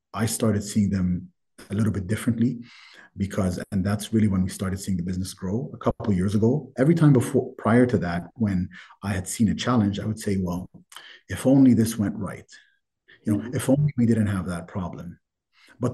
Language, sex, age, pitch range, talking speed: English, male, 30-49, 95-115 Hz, 205 wpm